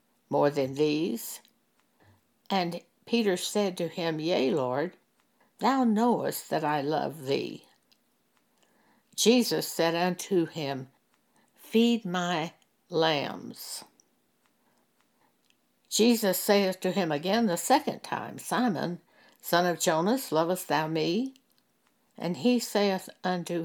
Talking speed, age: 105 wpm, 60-79